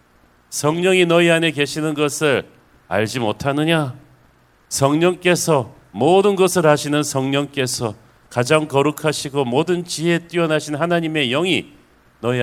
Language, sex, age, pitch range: Korean, male, 40-59, 110-155 Hz